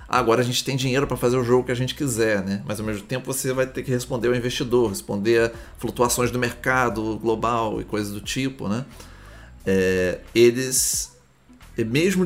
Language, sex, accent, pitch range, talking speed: Portuguese, male, Brazilian, 105-130 Hz, 190 wpm